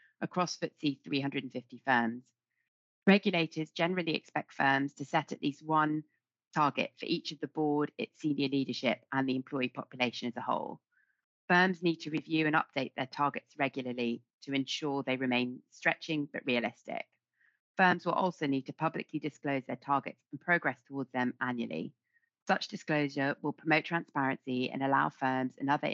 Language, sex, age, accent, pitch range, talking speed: English, female, 30-49, British, 130-160 Hz, 160 wpm